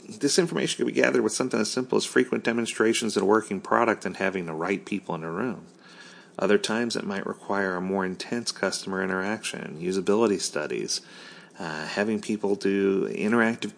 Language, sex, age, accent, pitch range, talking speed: English, male, 40-59, American, 90-130 Hz, 180 wpm